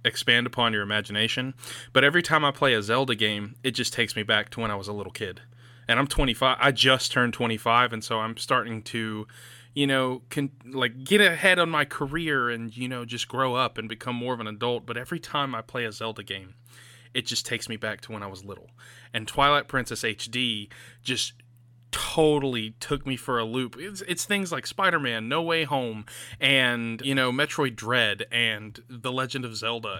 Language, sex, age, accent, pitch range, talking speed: English, male, 20-39, American, 115-135 Hz, 210 wpm